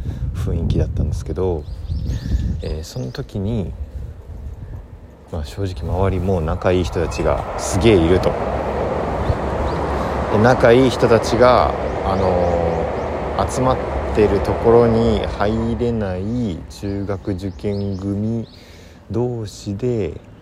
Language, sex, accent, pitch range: Japanese, male, native, 80-95 Hz